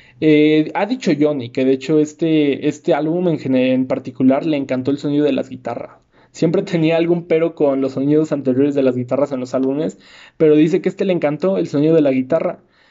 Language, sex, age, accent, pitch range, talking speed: Spanish, male, 20-39, Mexican, 135-160 Hz, 210 wpm